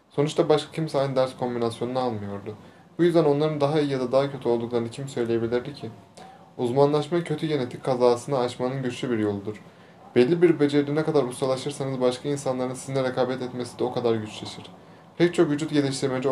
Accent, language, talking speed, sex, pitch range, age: native, Turkish, 175 wpm, male, 120-145 Hz, 30-49